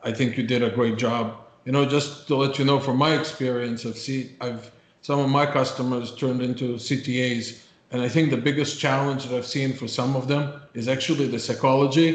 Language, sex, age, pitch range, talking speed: English, male, 50-69, 130-150 Hz, 215 wpm